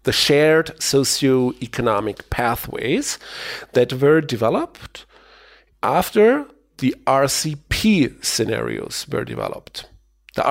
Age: 40-59